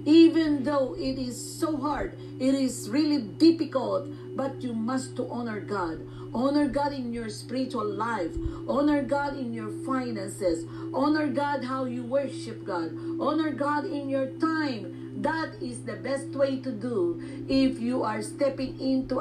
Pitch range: 235-290 Hz